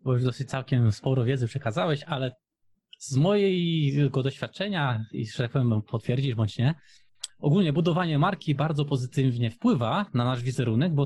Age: 20-39